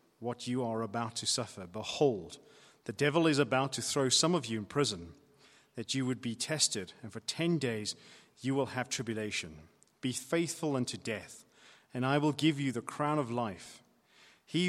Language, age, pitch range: English, 30-49, 115-150 Hz